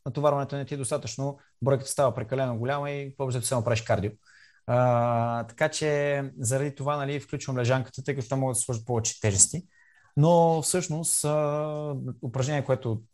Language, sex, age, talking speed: Bulgarian, male, 20-39, 155 wpm